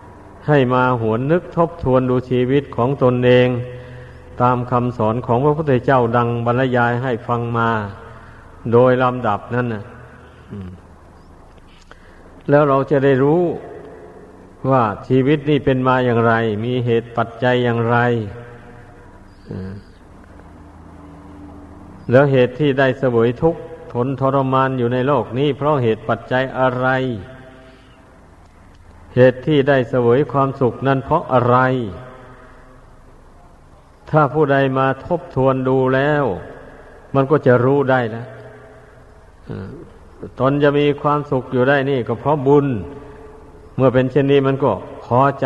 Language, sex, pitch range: Thai, male, 115-135 Hz